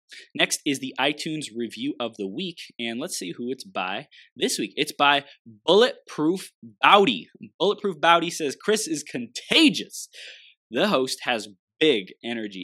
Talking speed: 145 wpm